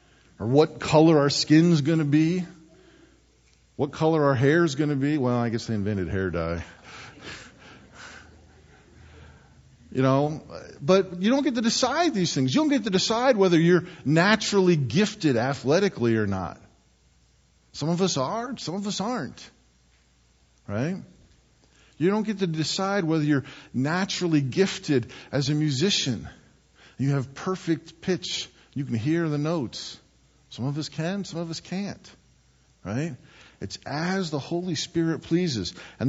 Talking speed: 150 wpm